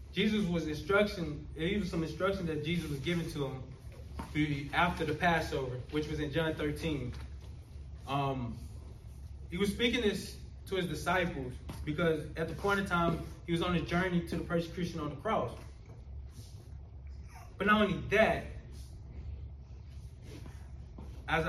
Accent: American